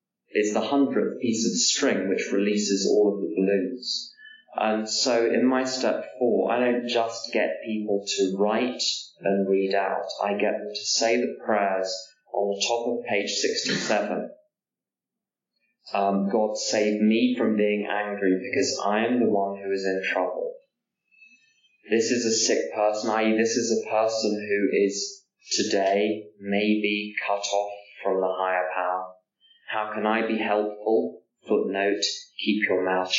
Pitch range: 100-125 Hz